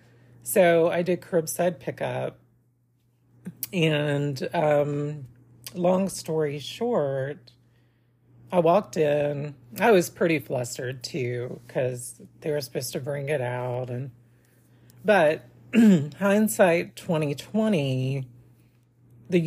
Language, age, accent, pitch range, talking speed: English, 40-59, American, 125-170 Hz, 95 wpm